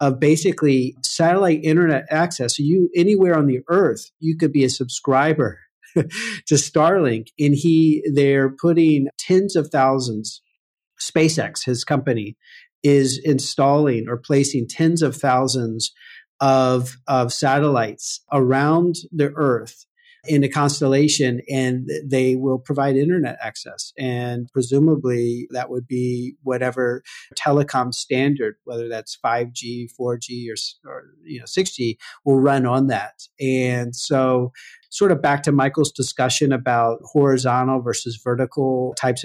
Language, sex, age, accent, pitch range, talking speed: English, male, 50-69, American, 125-145 Hz, 130 wpm